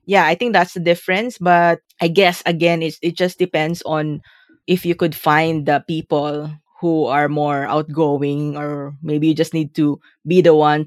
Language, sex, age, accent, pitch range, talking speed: English, female, 20-39, Filipino, 145-175 Hz, 180 wpm